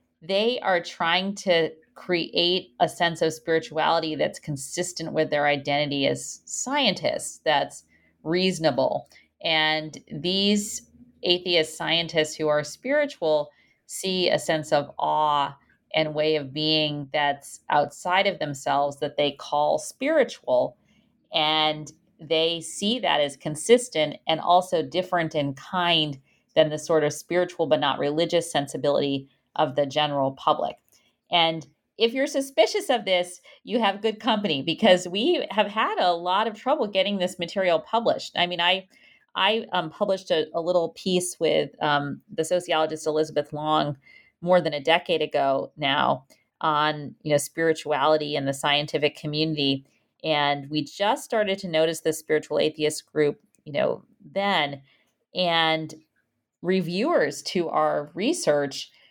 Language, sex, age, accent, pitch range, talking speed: English, female, 40-59, American, 150-180 Hz, 140 wpm